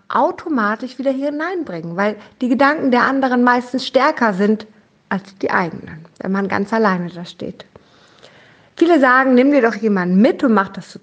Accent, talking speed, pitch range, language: German, 175 wpm, 200-265 Hz, German